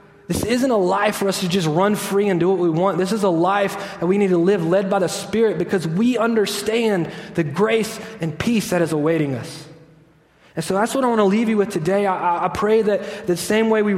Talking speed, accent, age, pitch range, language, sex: 250 wpm, American, 20-39, 150-200 Hz, English, male